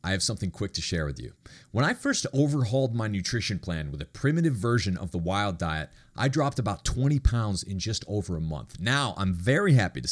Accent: American